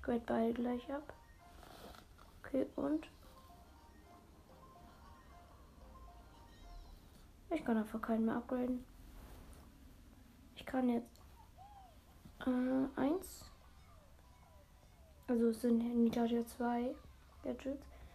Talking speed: 75 wpm